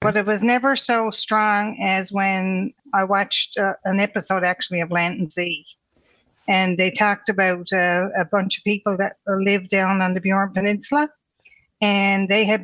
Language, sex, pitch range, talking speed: English, female, 185-215 Hz, 175 wpm